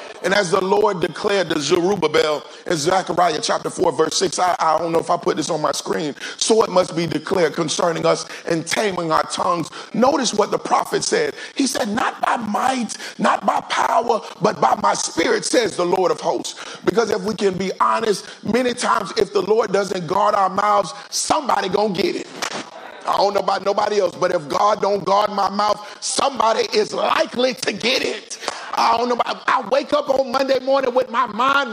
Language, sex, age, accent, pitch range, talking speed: English, male, 40-59, American, 190-260 Hz, 205 wpm